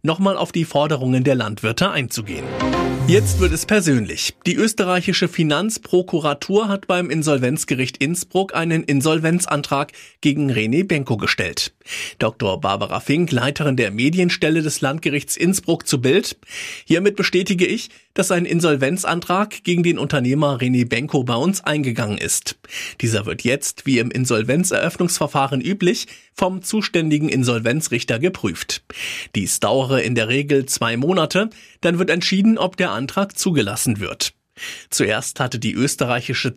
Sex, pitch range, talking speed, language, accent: male, 130-180 Hz, 130 wpm, German, German